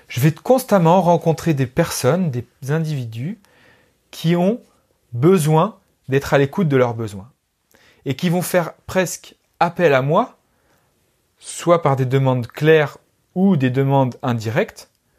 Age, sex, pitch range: 30-49, male, 130-180 Hz